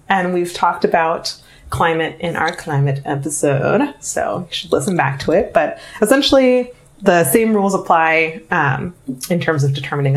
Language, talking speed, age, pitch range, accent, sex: English, 160 wpm, 30-49, 150-215 Hz, American, female